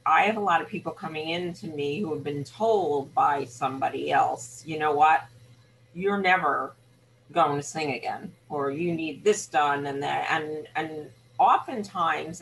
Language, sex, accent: English, female, American